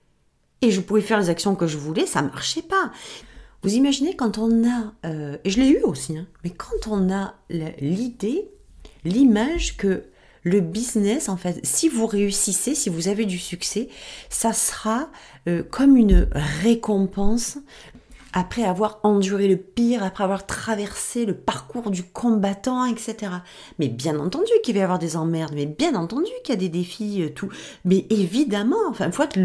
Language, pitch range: French, 180-240 Hz